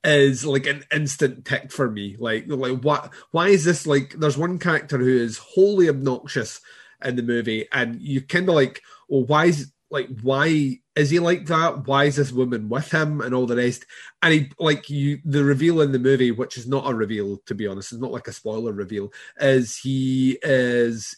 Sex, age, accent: male, 30-49, British